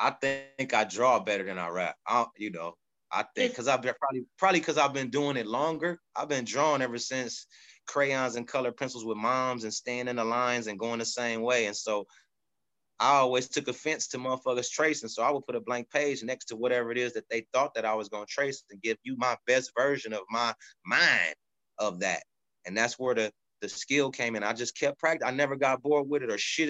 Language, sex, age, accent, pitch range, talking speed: English, male, 30-49, American, 115-150 Hz, 235 wpm